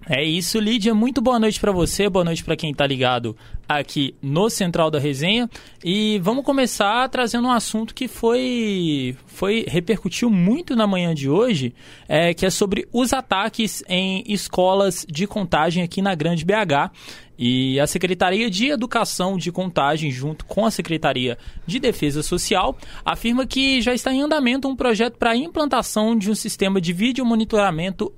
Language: Portuguese